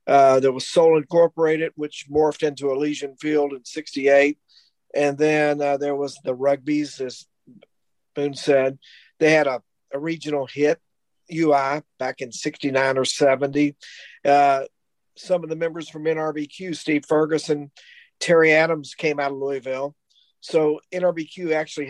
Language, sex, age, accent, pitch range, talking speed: English, male, 50-69, American, 140-165 Hz, 140 wpm